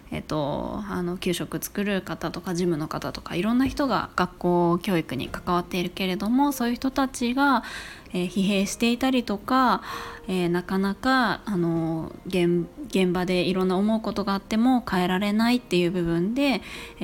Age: 20-39